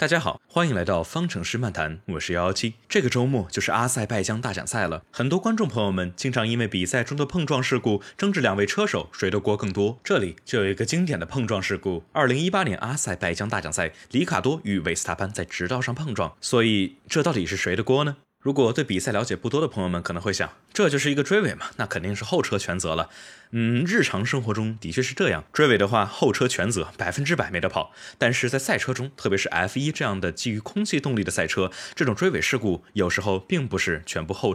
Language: Chinese